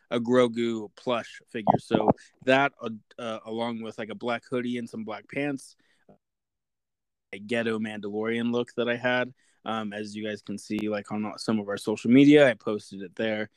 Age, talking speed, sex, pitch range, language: 20-39, 190 wpm, male, 110-135 Hz, English